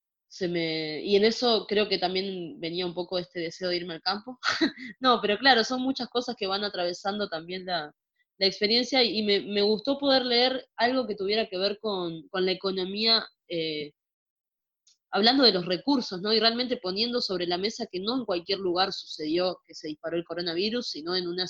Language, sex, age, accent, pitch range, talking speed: Spanish, female, 20-39, Argentinian, 175-210 Hz, 200 wpm